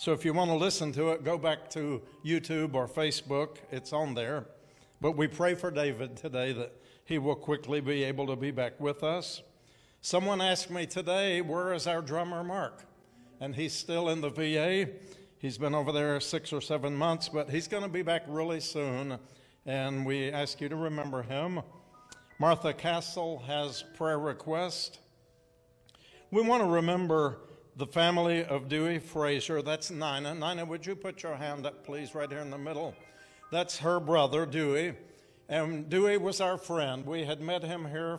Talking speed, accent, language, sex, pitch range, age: 180 wpm, American, English, male, 145-165 Hz, 60-79